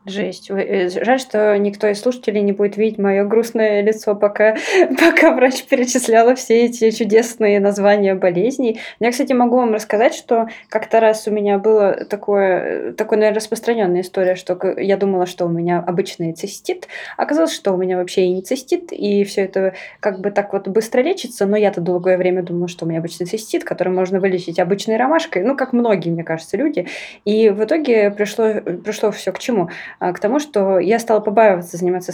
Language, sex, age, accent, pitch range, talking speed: Russian, female, 20-39, native, 190-230 Hz, 185 wpm